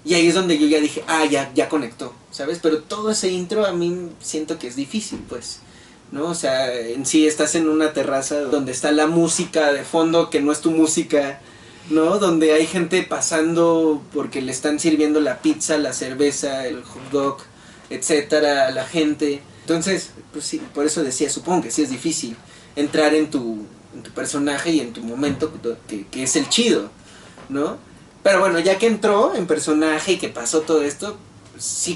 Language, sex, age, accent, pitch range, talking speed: Spanish, male, 30-49, Mexican, 145-175 Hz, 195 wpm